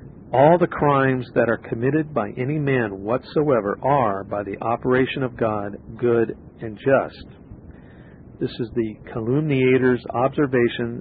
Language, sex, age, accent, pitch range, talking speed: English, male, 50-69, American, 110-135 Hz, 130 wpm